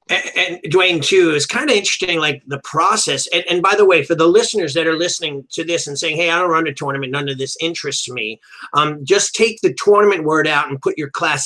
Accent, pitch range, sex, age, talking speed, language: American, 145-175 Hz, male, 30-49, 250 wpm, English